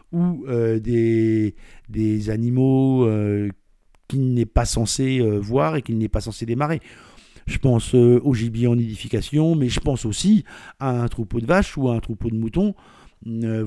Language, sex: French, male